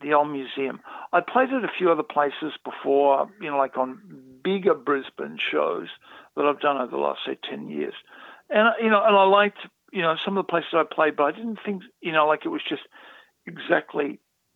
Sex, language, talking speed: male, English, 215 wpm